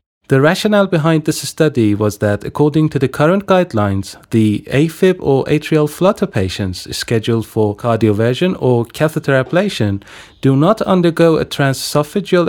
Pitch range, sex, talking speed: 110-165 Hz, male, 140 wpm